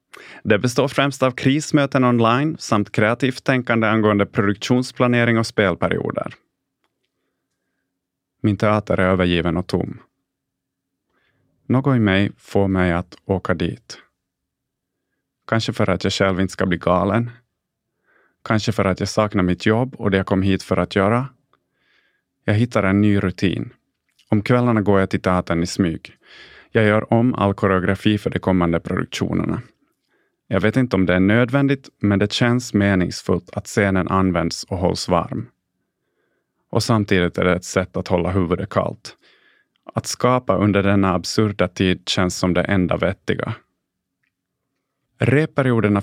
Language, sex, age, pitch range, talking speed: Swedish, male, 30-49, 95-120 Hz, 145 wpm